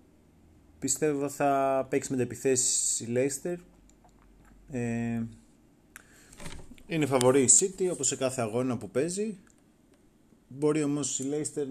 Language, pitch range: Greek, 115-140 Hz